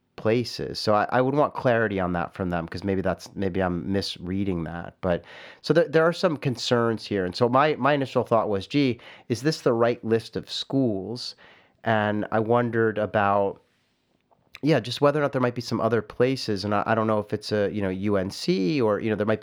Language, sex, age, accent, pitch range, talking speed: English, male, 30-49, American, 95-115 Hz, 220 wpm